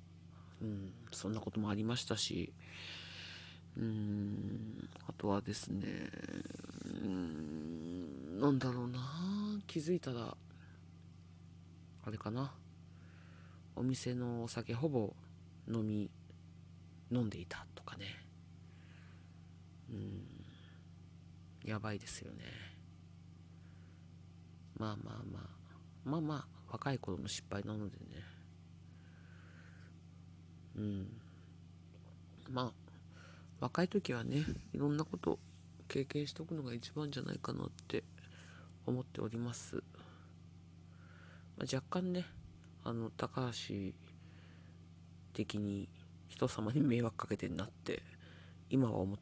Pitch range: 85-110 Hz